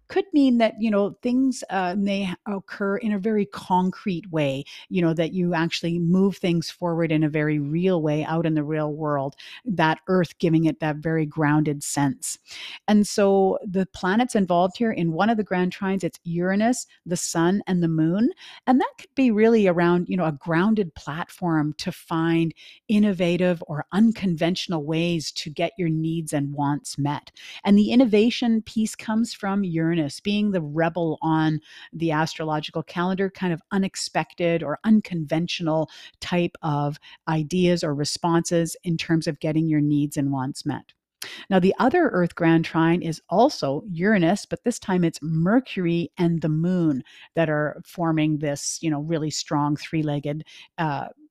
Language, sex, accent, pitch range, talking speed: English, female, American, 155-195 Hz, 170 wpm